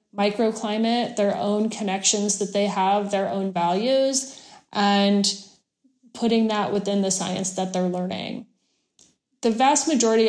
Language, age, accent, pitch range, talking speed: English, 20-39, American, 190-220 Hz, 130 wpm